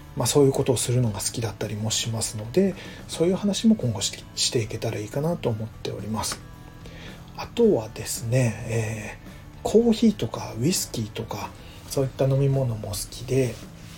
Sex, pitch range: male, 105-135 Hz